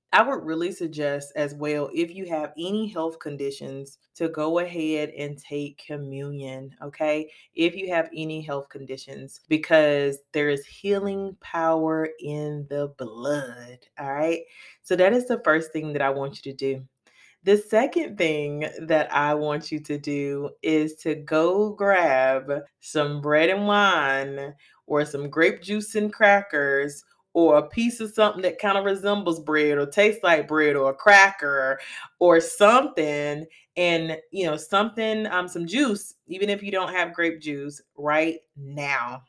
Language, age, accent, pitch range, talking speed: English, 30-49, American, 145-195 Hz, 160 wpm